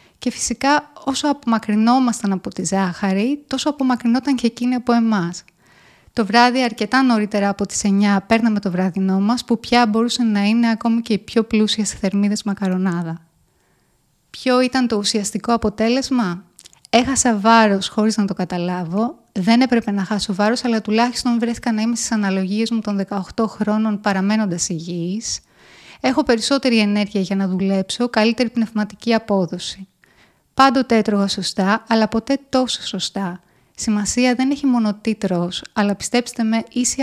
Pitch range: 195-235 Hz